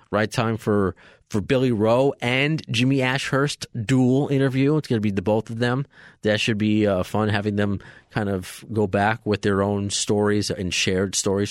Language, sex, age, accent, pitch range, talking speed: English, male, 30-49, American, 95-125 Hz, 195 wpm